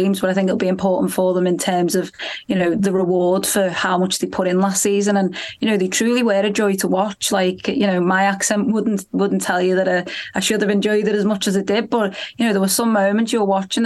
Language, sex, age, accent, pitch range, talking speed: English, female, 20-39, British, 185-200 Hz, 275 wpm